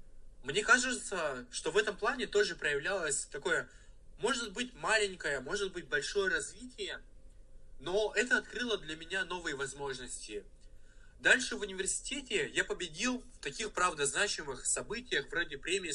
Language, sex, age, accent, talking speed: Russian, male, 20-39, native, 130 wpm